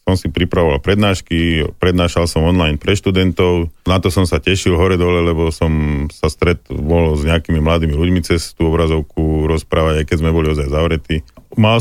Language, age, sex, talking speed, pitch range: Slovak, 40-59, male, 180 wpm, 80-95 Hz